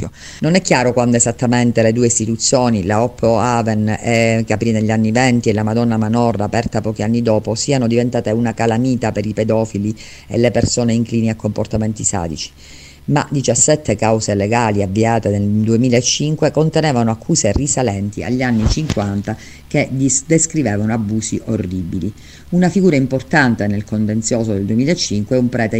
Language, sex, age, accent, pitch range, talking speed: Italian, female, 50-69, native, 105-125 Hz, 155 wpm